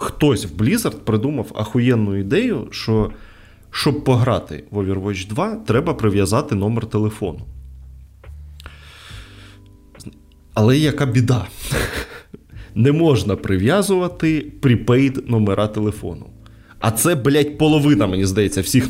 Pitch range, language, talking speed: 100-130 Hz, Ukrainian, 100 wpm